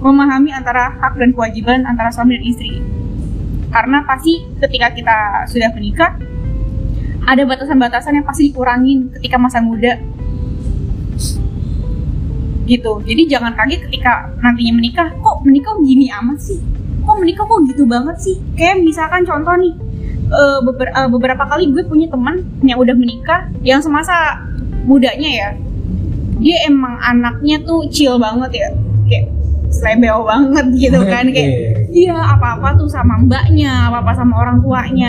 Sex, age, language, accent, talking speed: female, 10-29, Indonesian, native, 140 wpm